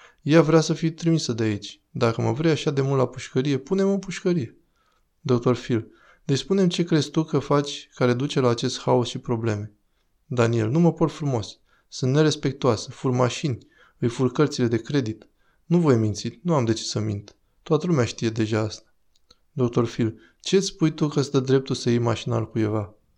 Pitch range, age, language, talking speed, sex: 115-150 Hz, 20-39, Romanian, 195 wpm, male